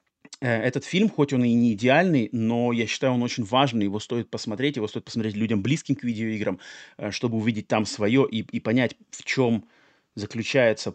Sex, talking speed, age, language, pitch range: male, 180 wpm, 30-49, Russian, 105-135 Hz